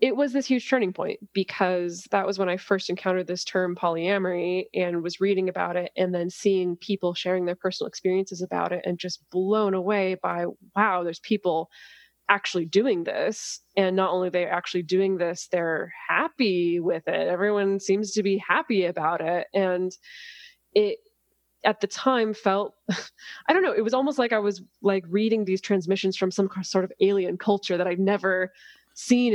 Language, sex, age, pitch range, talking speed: English, female, 20-39, 180-200 Hz, 185 wpm